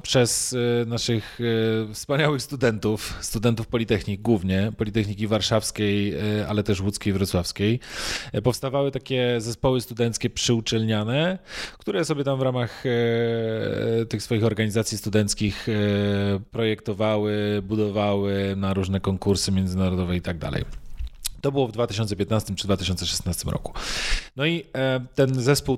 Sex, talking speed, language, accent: male, 110 wpm, Polish, native